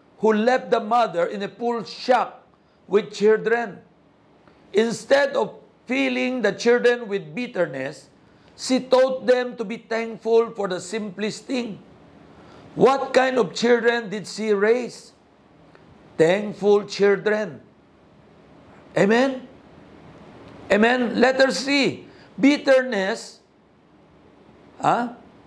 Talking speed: 100 wpm